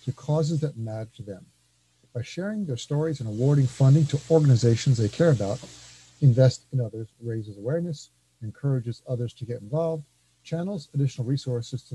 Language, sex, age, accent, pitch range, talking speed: English, male, 50-69, American, 110-130 Hz, 160 wpm